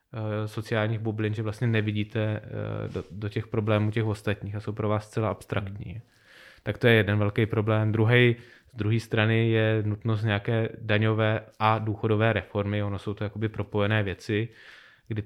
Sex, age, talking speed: male, 20-39, 160 wpm